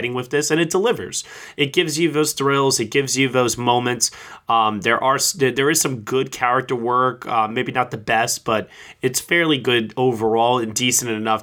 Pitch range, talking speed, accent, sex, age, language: 110-130 Hz, 195 wpm, American, male, 20-39, English